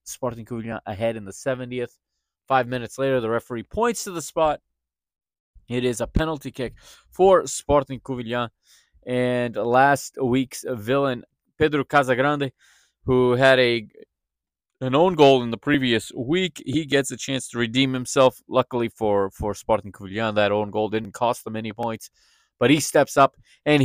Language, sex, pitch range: English, male, 110-140 Hz